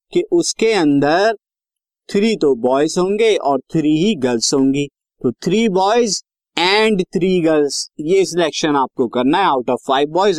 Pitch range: 135-185 Hz